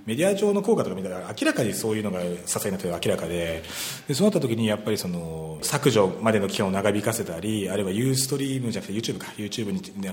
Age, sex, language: 30-49, male, Japanese